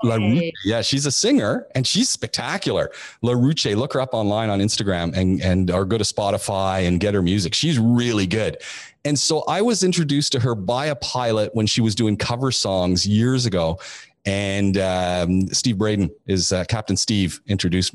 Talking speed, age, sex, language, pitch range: 185 wpm, 40-59, male, English, 100-130 Hz